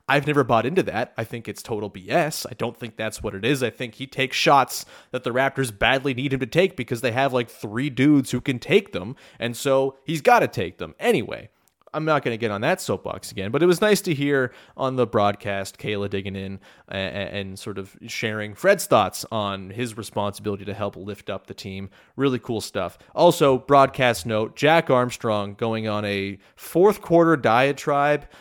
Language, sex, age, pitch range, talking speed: English, male, 30-49, 110-155 Hz, 210 wpm